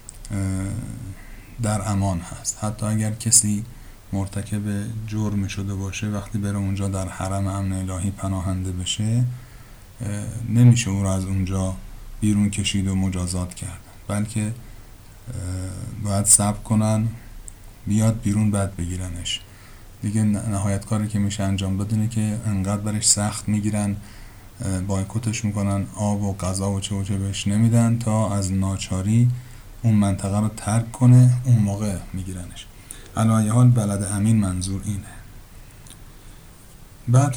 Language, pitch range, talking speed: Persian, 100-115 Hz, 125 wpm